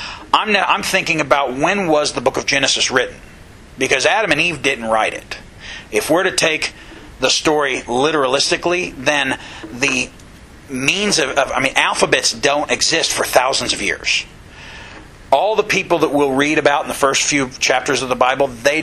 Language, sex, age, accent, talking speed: English, male, 40-59, American, 180 wpm